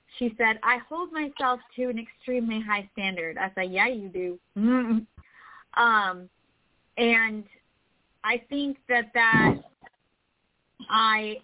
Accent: American